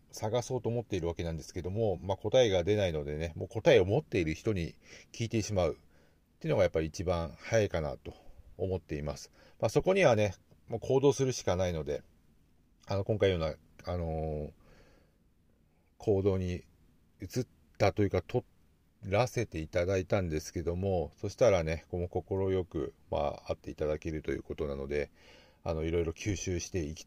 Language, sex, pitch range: Japanese, male, 80-100 Hz